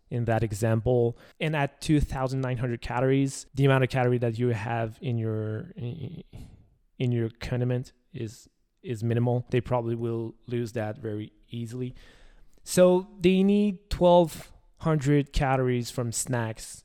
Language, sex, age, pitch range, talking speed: English, male, 20-39, 120-145 Hz, 130 wpm